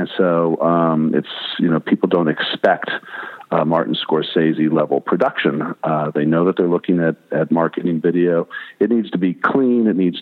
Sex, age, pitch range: male, 50-69, 85-100 Hz